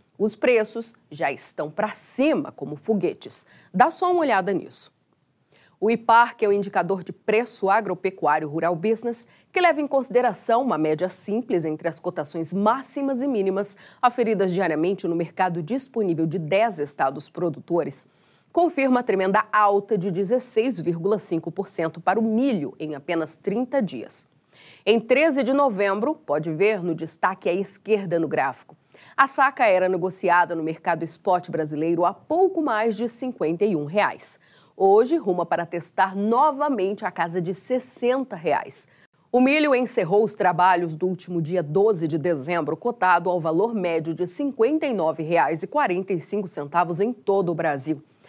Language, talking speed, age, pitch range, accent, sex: Portuguese, 145 wpm, 40-59, 170-240 Hz, Brazilian, female